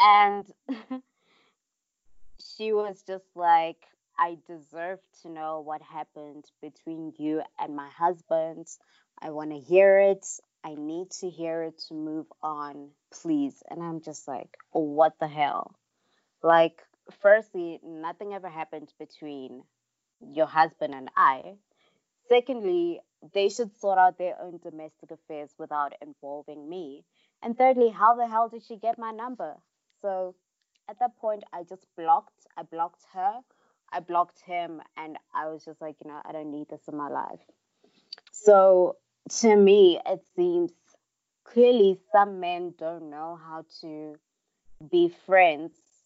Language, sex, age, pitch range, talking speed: English, female, 20-39, 160-210 Hz, 145 wpm